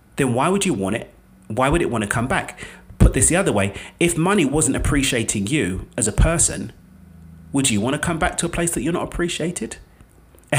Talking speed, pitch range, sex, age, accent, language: 225 wpm, 100-150 Hz, male, 30-49, British, English